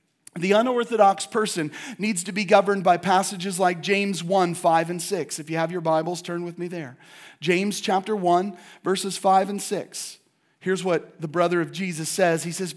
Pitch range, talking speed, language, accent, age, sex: 175-225 Hz, 190 wpm, English, American, 40-59, male